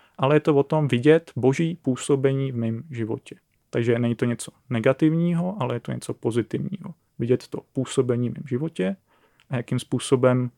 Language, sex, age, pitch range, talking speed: Czech, male, 30-49, 115-135 Hz, 170 wpm